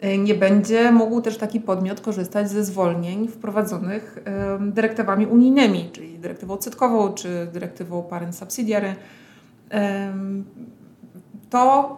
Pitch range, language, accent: 195-220 Hz, Polish, native